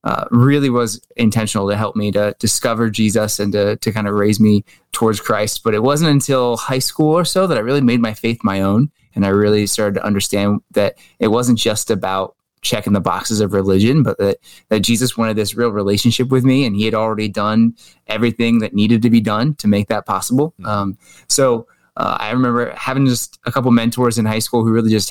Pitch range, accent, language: 105-120 Hz, American, English